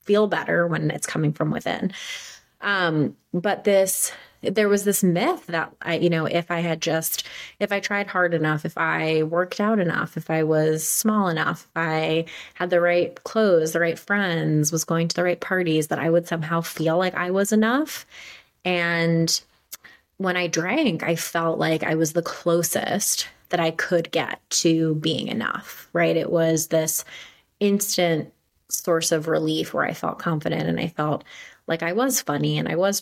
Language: English